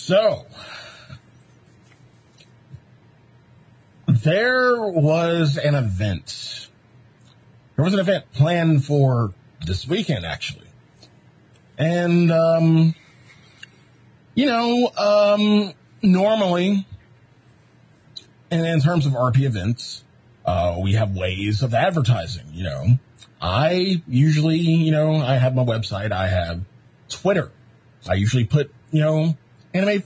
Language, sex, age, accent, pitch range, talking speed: English, male, 40-59, American, 120-165 Hz, 105 wpm